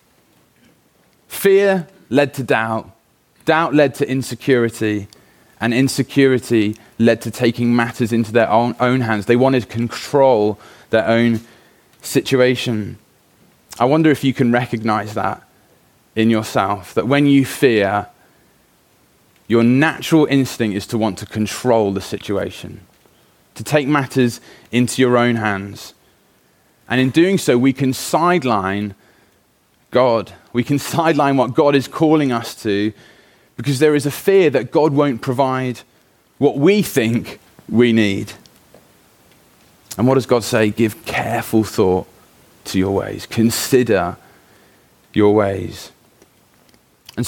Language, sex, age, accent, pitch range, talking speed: English, male, 20-39, British, 110-140 Hz, 130 wpm